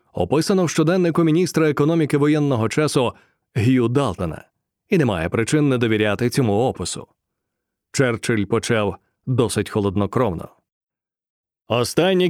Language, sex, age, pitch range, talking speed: Ukrainian, male, 30-49, 130-160 Hz, 100 wpm